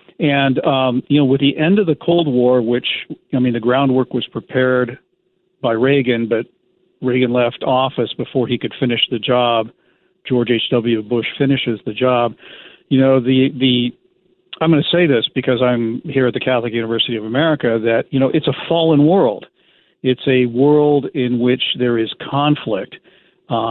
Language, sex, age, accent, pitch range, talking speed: English, male, 50-69, American, 120-150 Hz, 175 wpm